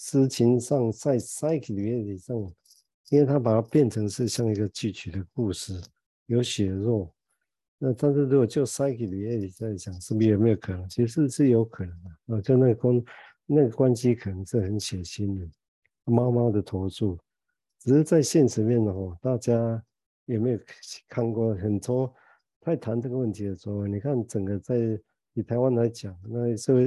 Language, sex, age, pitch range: Chinese, male, 50-69, 100-120 Hz